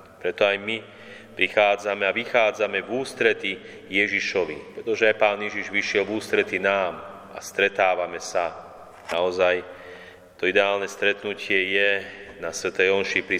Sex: male